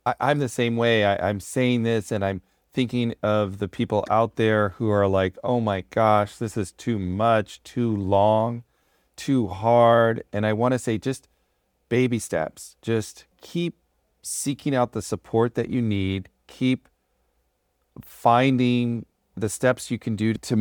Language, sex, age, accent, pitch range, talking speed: English, male, 40-59, American, 95-120 Hz, 155 wpm